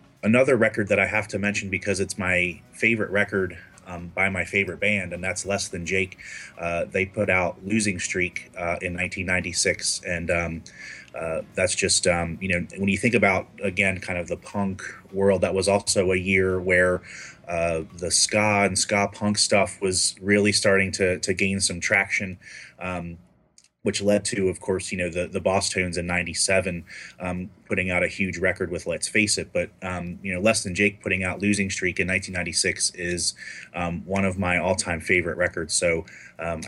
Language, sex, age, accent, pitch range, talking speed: English, male, 30-49, American, 90-100 Hz, 190 wpm